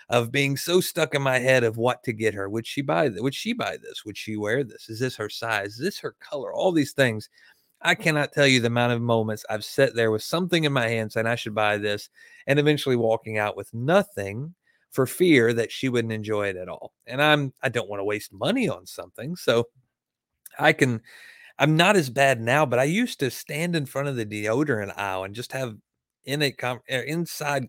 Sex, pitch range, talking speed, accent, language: male, 110-145 Hz, 230 wpm, American, English